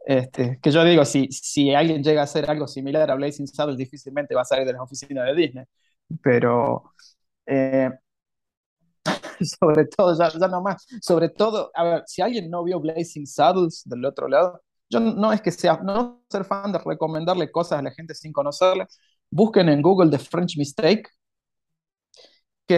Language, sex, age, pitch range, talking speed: Spanish, male, 20-39, 145-185 Hz, 180 wpm